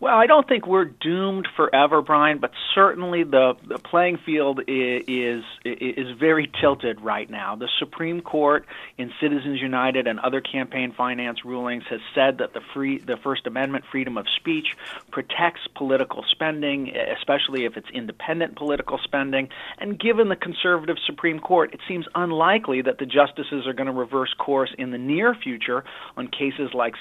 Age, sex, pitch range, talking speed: 40-59, male, 130-180 Hz, 170 wpm